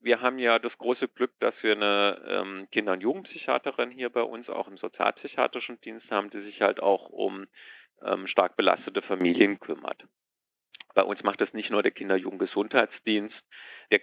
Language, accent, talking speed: German, German, 170 wpm